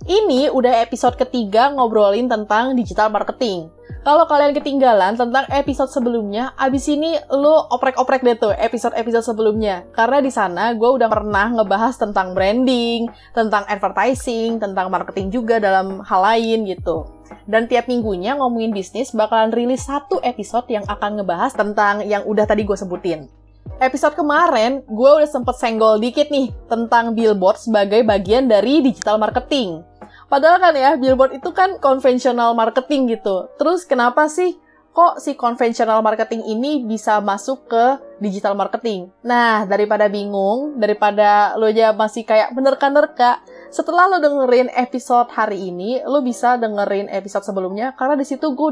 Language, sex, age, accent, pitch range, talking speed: Indonesian, female, 20-39, native, 210-265 Hz, 145 wpm